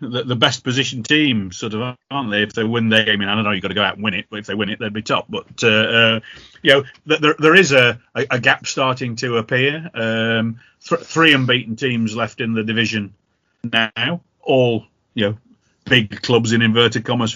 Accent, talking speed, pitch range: British, 220 wpm, 110-130 Hz